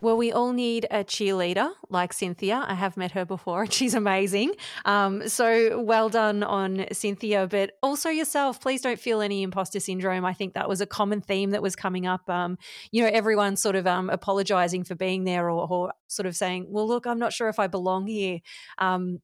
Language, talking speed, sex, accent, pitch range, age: English, 210 wpm, female, Australian, 180-215 Hz, 30-49